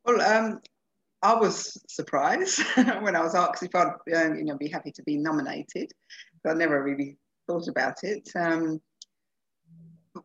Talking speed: 145 wpm